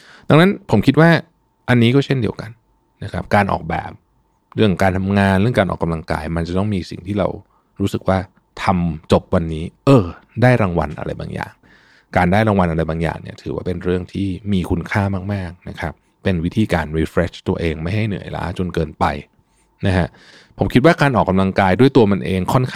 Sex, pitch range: male, 85-110 Hz